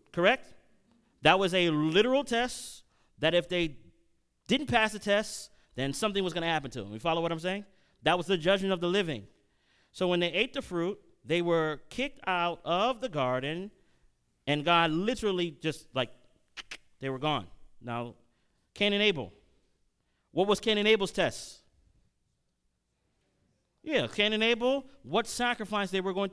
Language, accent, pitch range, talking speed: English, American, 160-215 Hz, 165 wpm